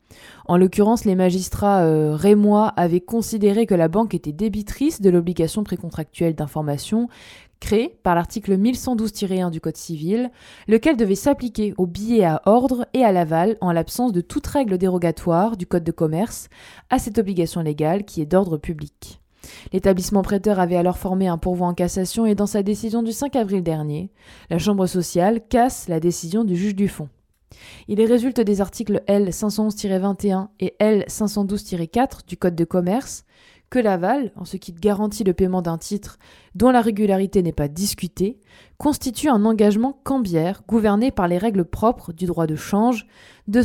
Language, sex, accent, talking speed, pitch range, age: French, female, French, 165 wpm, 175-225 Hz, 20-39